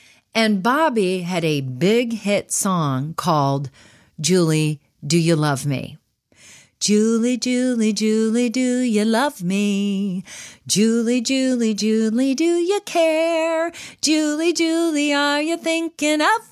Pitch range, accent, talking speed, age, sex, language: 175-270 Hz, American, 115 wpm, 40-59, female, English